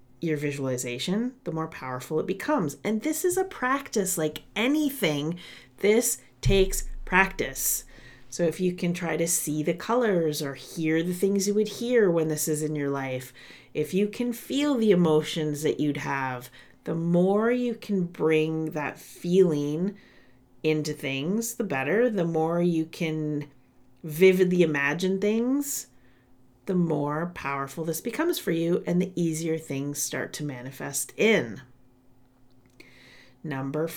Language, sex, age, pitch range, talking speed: English, female, 40-59, 145-195 Hz, 145 wpm